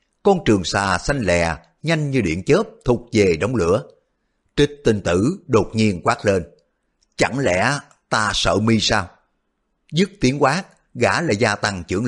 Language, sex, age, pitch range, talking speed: Vietnamese, male, 60-79, 95-145 Hz, 175 wpm